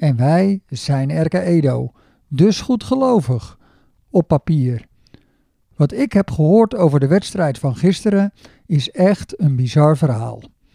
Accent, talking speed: Dutch, 135 wpm